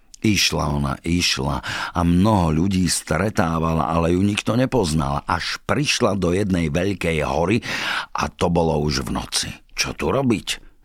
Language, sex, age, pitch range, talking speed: Slovak, male, 50-69, 80-100 Hz, 145 wpm